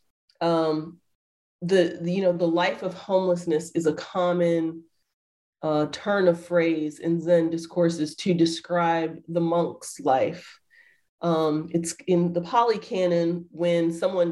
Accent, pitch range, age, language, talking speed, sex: American, 165-180 Hz, 30-49, English, 135 wpm, female